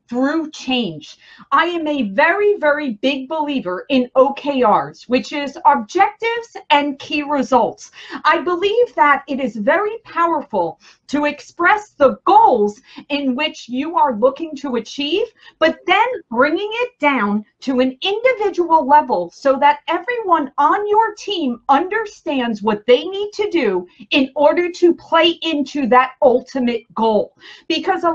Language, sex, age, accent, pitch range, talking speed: English, female, 40-59, American, 255-345 Hz, 140 wpm